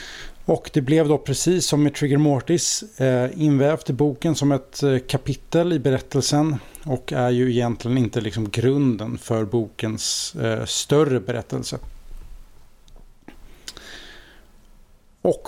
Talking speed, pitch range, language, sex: 120 wpm, 125-150 Hz, Swedish, male